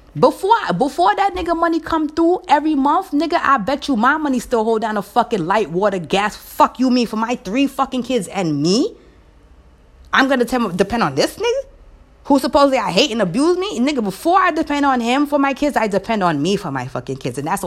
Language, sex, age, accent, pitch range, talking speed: English, female, 20-39, American, 160-260 Hz, 225 wpm